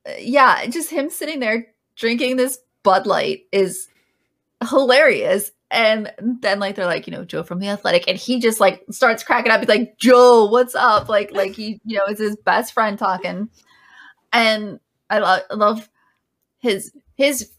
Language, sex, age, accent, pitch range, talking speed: English, female, 20-39, American, 195-255 Hz, 170 wpm